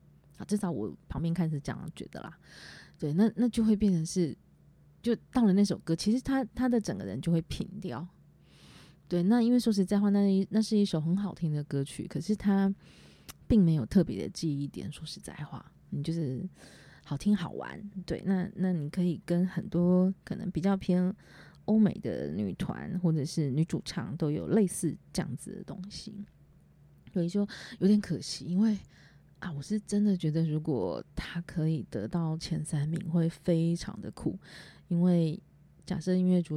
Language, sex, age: Chinese, female, 20-39